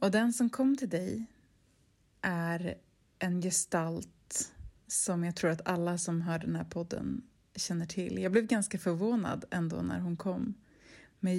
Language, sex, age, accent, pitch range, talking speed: Swedish, female, 20-39, native, 170-210 Hz, 160 wpm